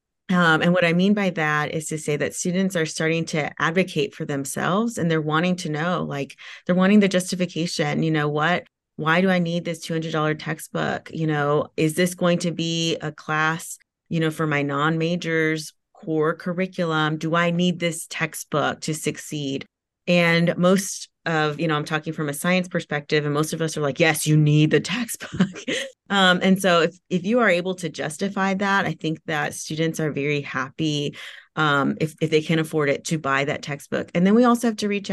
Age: 30-49